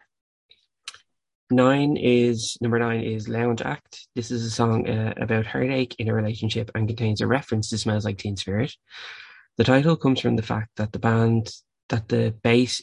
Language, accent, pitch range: English, Irish, 110-120 Hz